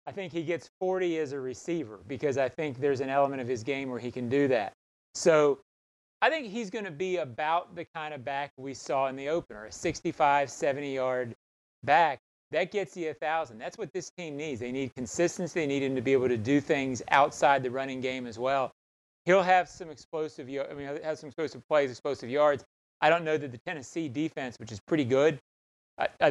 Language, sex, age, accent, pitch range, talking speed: English, male, 30-49, American, 125-155 Hz, 215 wpm